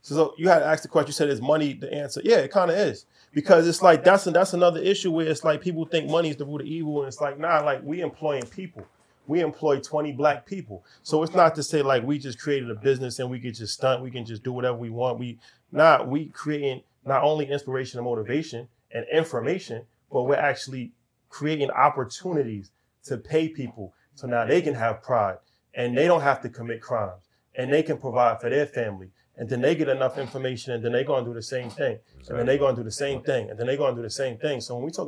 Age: 30-49